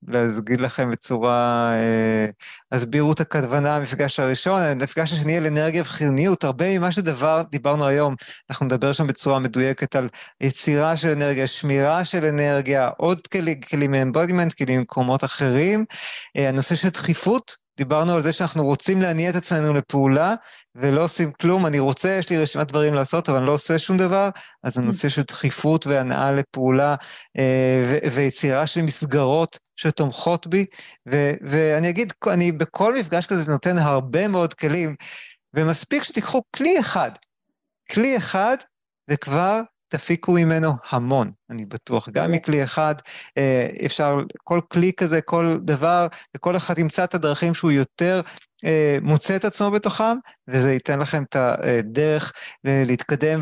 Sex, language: male, Hebrew